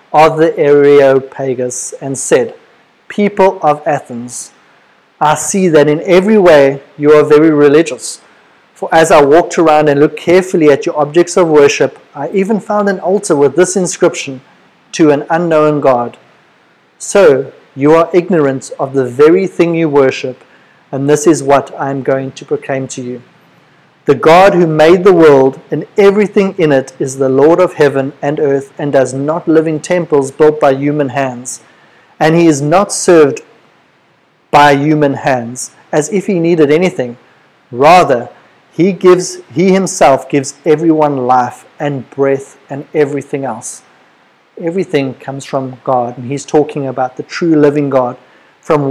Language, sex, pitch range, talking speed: English, male, 135-170 Hz, 160 wpm